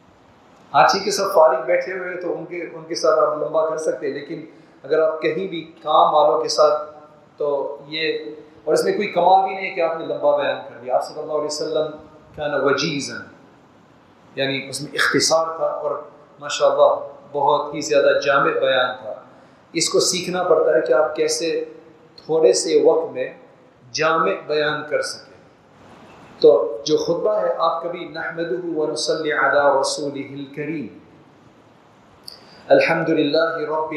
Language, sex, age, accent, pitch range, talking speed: English, male, 40-59, Indian, 150-165 Hz, 155 wpm